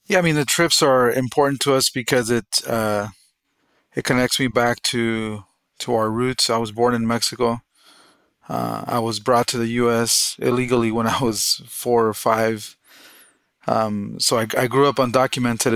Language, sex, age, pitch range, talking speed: English, male, 30-49, 110-125 Hz, 175 wpm